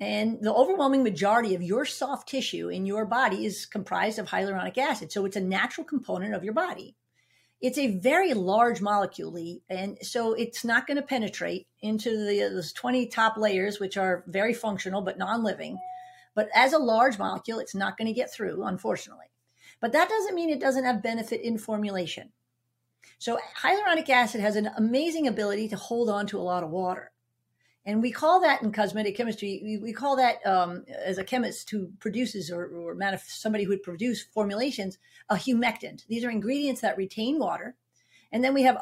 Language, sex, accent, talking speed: English, female, American, 185 wpm